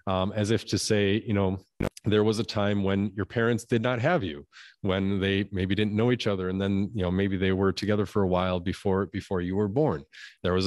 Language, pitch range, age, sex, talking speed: English, 95-110 Hz, 40-59, male, 240 wpm